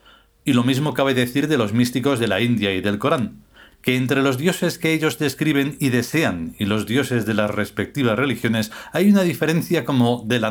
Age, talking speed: 40-59, 205 wpm